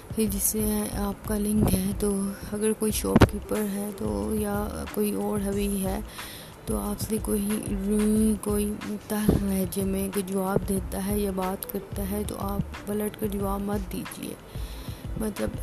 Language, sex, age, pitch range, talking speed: Urdu, female, 30-49, 190-210 Hz, 165 wpm